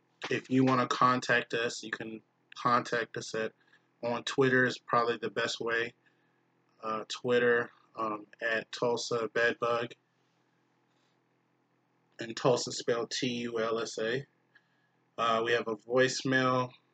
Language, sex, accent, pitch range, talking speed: English, male, American, 105-130 Hz, 120 wpm